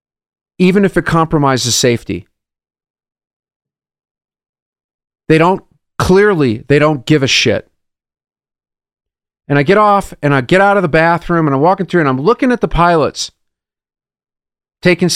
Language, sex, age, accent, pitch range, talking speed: English, male, 40-59, American, 145-190 Hz, 140 wpm